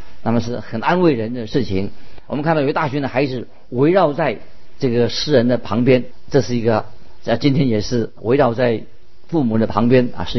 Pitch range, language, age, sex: 115-145 Hz, Chinese, 50-69, male